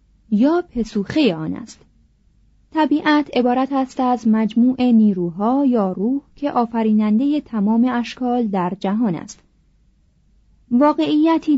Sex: female